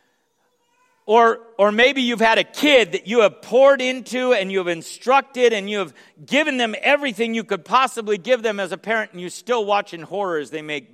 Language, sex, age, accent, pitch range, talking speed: English, male, 50-69, American, 200-270 Hz, 215 wpm